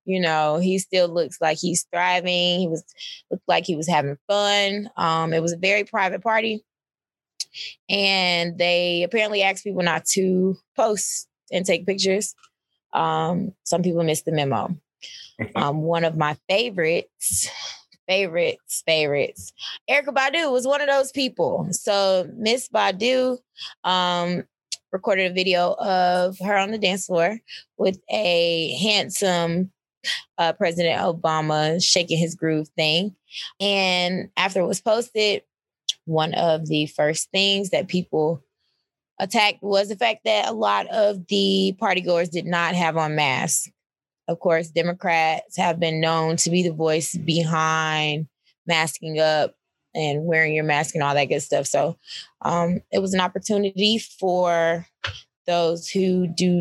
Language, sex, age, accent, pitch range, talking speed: English, female, 20-39, American, 160-195 Hz, 145 wpm